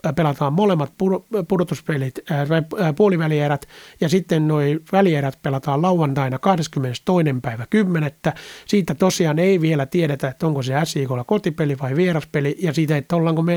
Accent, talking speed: native, 135 wpm